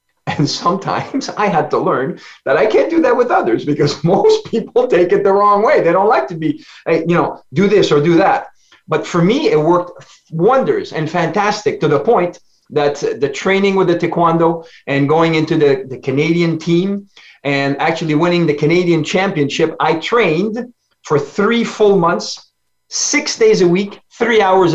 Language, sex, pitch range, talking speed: English, male, 155-205 Hz, 180 wpm